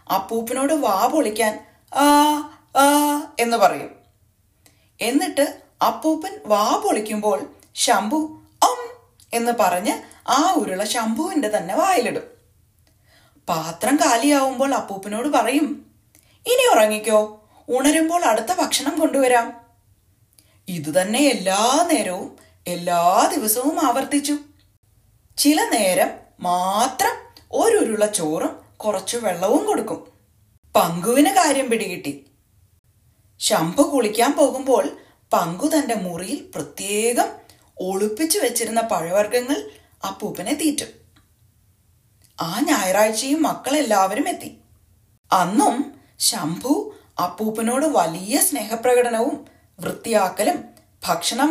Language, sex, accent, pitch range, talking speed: Malayalam, female, native, 185-300 Hz, 80 wpm